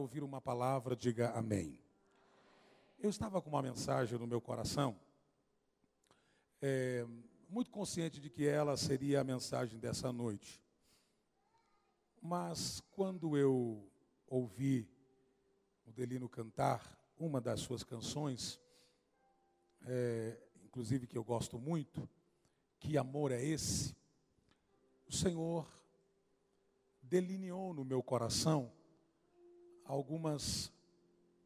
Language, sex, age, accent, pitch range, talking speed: Portuguese, male, 50-69, Brazilian, 125-165 Hz, 95 wpm